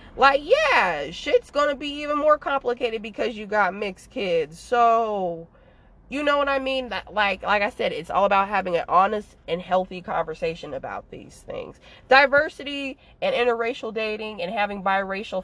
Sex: female